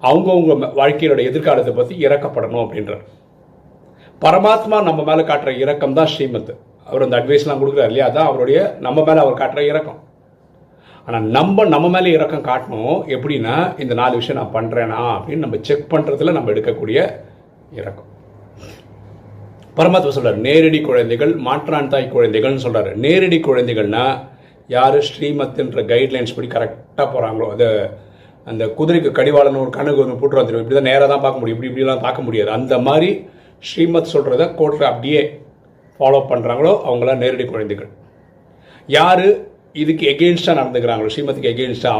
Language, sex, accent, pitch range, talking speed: Tamil, male, native, 115-155 Hz, 80 wpm